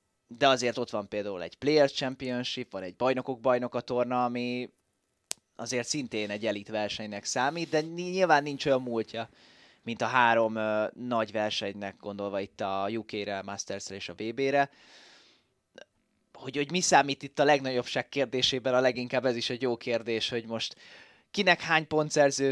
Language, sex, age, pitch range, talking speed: Hungarian, male, 20-39, 115-140 Hz, 155 wpm